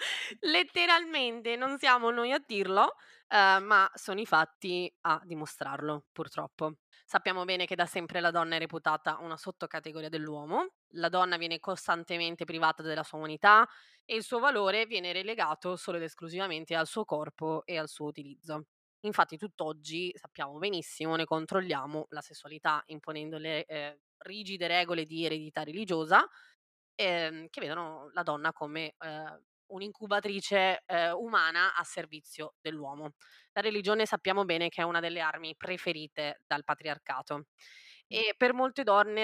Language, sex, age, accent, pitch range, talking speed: Italian, female, 20-39, native, 155-195 Hz, 145 wpm